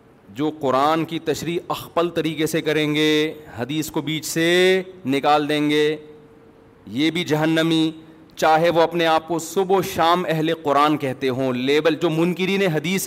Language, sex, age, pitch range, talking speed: Urdu, male, 40-59, 150-190 Hz, 160 wpm